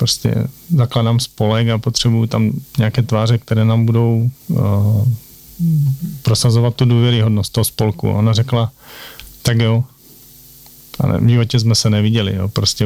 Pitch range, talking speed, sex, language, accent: 105-120 Hz, 135 wpm, male, Czech, native